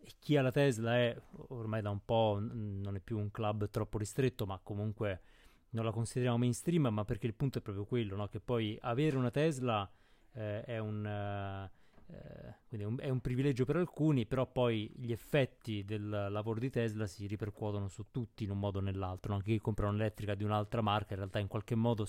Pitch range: 105-125 Hz